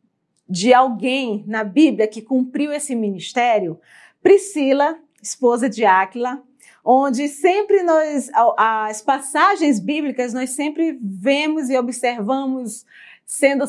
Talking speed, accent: 105 wpm, Brazilian